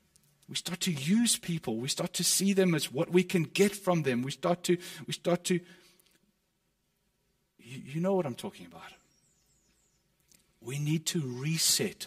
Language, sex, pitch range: English, male, 135-185 Hz